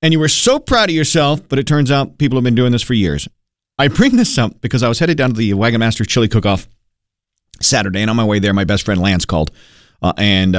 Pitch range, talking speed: 105-150 Hz, 260 wpm